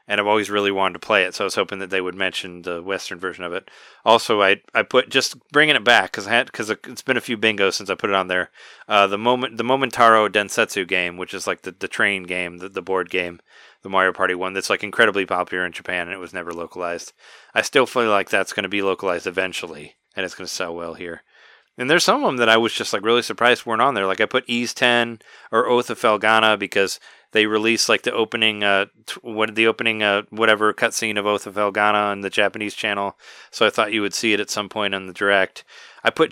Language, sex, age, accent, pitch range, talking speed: English, male, 30-49, American, 95-115 Hz, 255 wpm